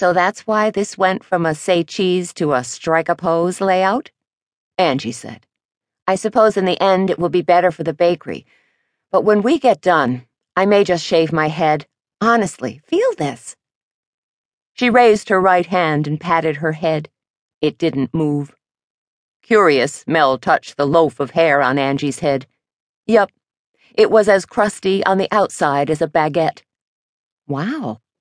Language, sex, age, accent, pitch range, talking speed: English, female, 50-69, American, 150-205 Hz, 165 wpm